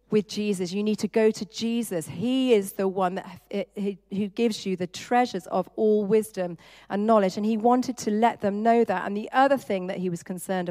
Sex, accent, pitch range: female, British, 195-245 Hz